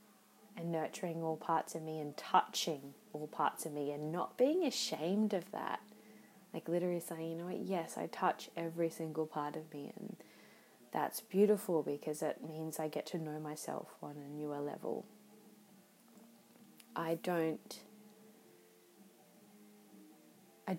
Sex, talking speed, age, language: female, 145 wpm, 20-39, English